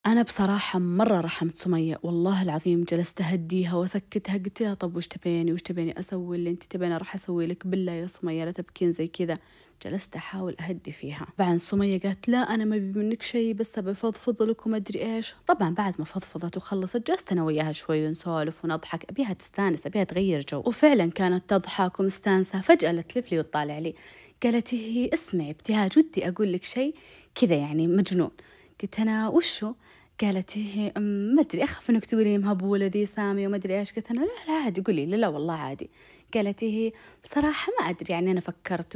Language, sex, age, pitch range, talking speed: Arabic, female, 20-39, 175-220 Hz, 180 wpm